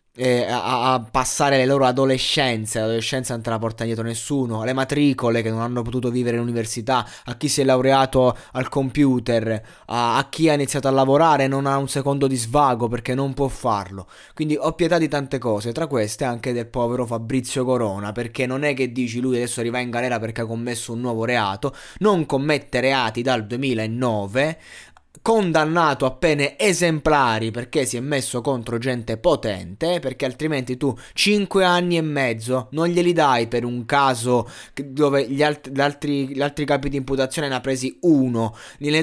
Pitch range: 120-145 Hz